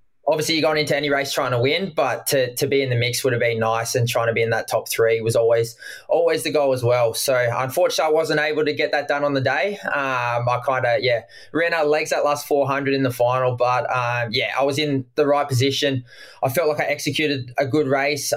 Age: 20-39